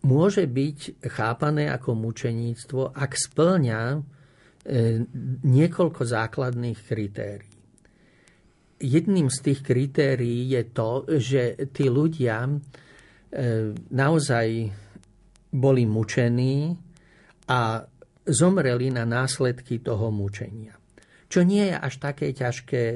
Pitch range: 115-145 Hz